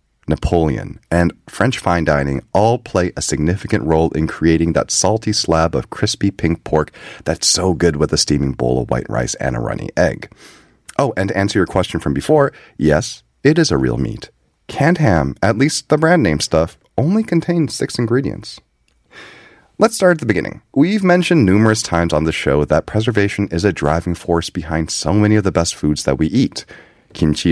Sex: male